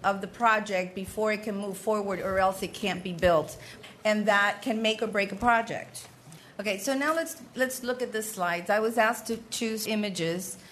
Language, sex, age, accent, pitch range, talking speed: English, female, 40-59, American, 185-230 Hz, 205 wpm